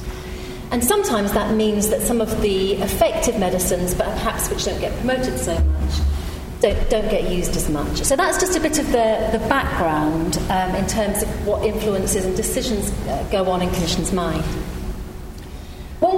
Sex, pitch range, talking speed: female, 185-285 Hz, 175 wpm